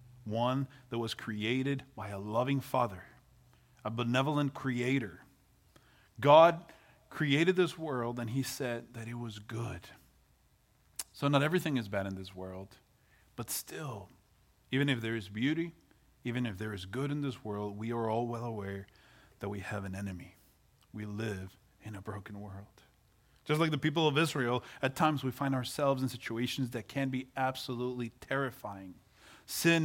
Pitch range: 115-145 Hz